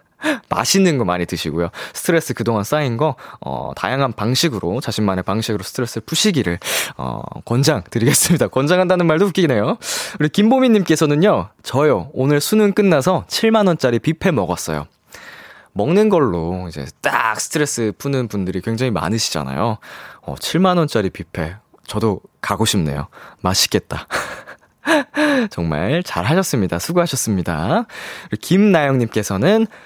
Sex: male